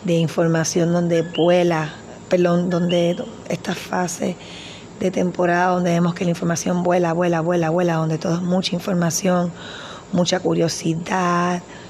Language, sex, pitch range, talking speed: Spanish, female, 170-185 Hz, 125 wpm